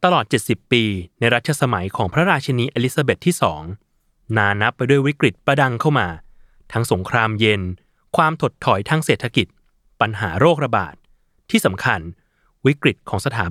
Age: 20-39